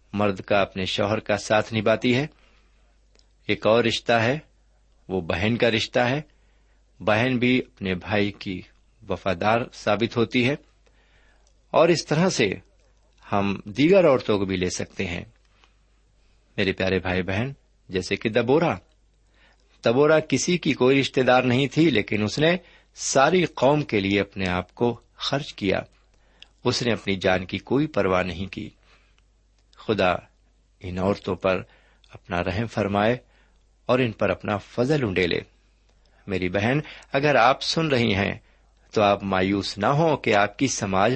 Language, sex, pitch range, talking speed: Urdu, male, 95-125 Hz, 150 wpm